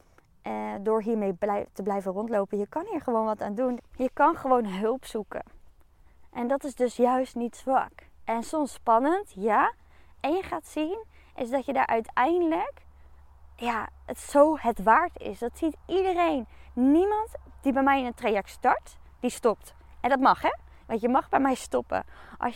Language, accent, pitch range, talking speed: Dutch, Dutch, 210-270 Hz, 175 wpm